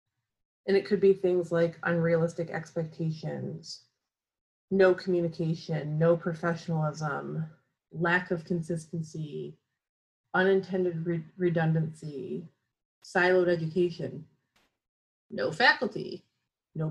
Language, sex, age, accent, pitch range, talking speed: English, female, 30-49, American, 170-205 Hz, 80 wpm